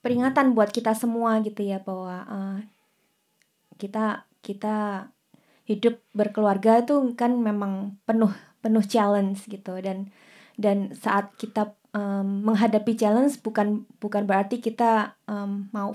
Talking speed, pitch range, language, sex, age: 120 wpm, 200-235 Hz, Indonesian, female, 20-39